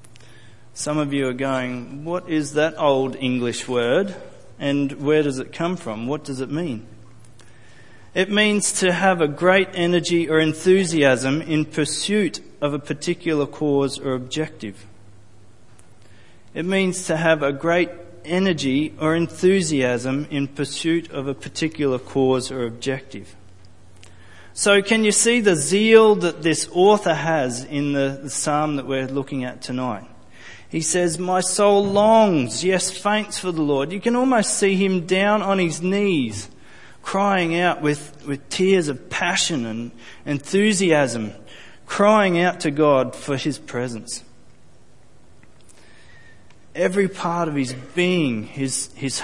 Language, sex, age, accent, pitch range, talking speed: English, male, 40-59, Australian, 125-185 Hz, 140 wpm